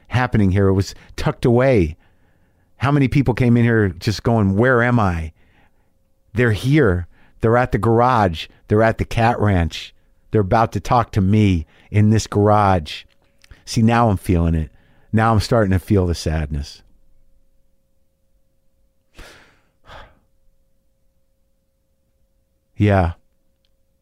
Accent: American